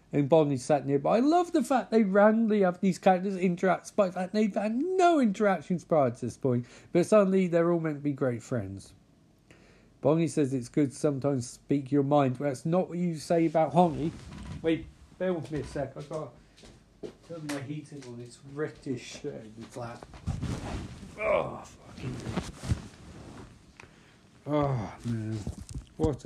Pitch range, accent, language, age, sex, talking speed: 125-180 Hz, British, English, 40-59, male, 165 wpm